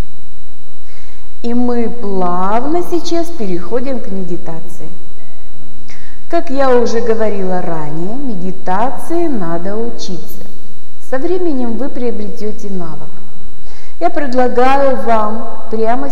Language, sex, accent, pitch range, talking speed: Russian, female, native, 165-250 Hz, 90 wpm